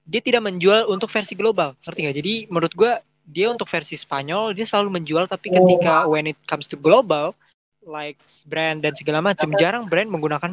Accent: Indonesian